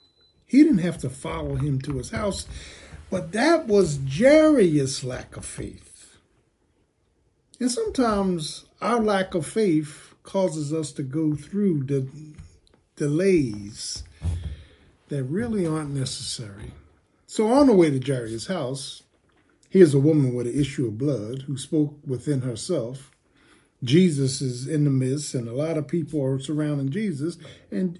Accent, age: American, 50-69